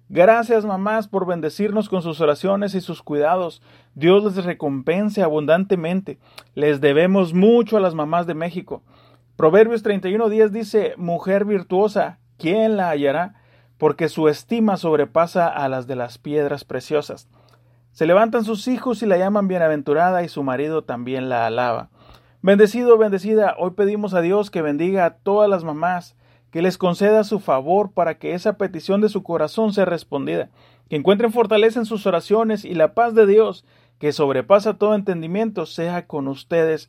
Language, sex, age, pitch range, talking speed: Spanish, male, 40-59, 150-205 Hz, 160 wpm